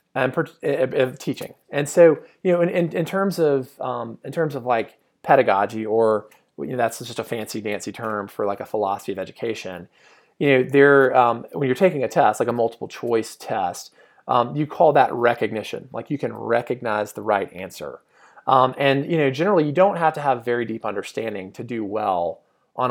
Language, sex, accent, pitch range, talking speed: English, male, American, 120-170 Hz, 195 wpm